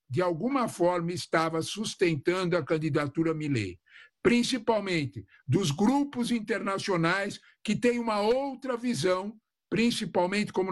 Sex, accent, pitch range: male, Brazilian, 175-255 Hz